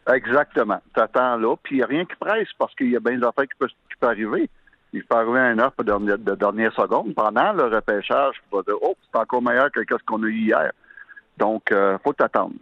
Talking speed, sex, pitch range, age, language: 225 wpm, male, 105-175 Hz, 60-79, French